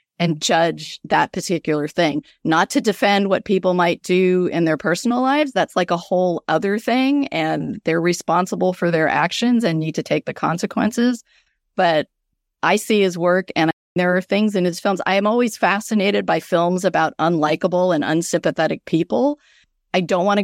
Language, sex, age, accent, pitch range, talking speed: English, female, 40-59, American, 165-210 Hz, 180 wpm